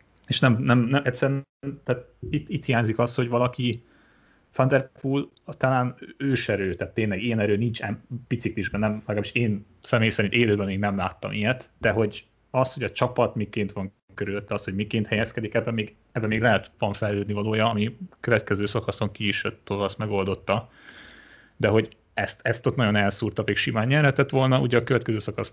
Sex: male